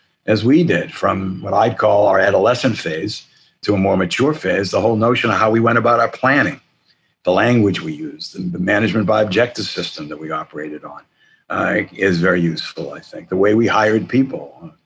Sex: male